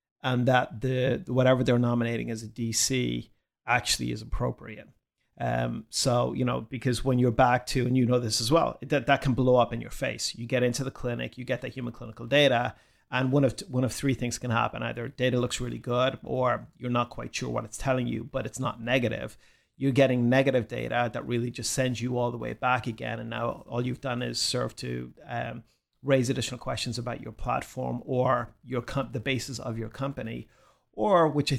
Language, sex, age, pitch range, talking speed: English, male, 30-49, 120-135 Hz, 215 wpm